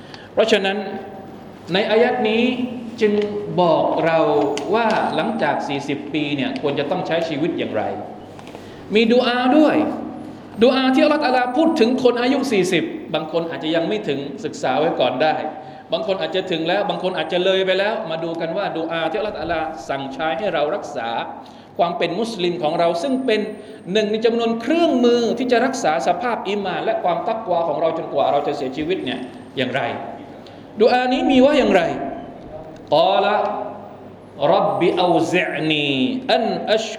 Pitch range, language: 160-230 Hz, Thai